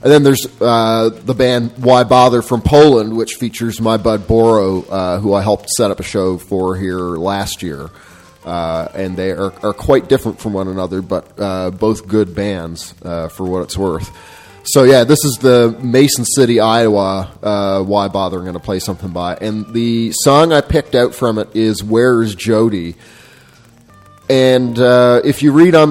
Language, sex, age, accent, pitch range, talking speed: English, male, 30-49, American, 100-125 Hz, 190 wpm